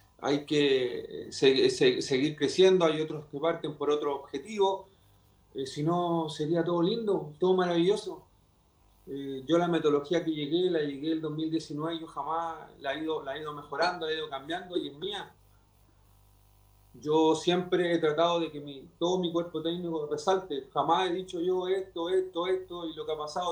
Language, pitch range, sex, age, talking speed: Spanish, 135-180 Hz, male, 40-59, 175 wpm